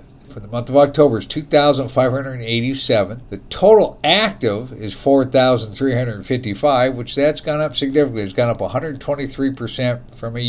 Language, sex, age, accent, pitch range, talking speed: English, male, 50-69, American, 115-140 Hz, 135 wpm